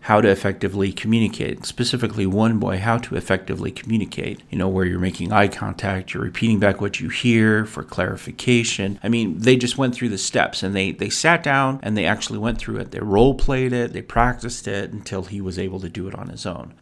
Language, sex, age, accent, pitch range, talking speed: English, male, 40-59, American, 100-125 Hz, 220 wpm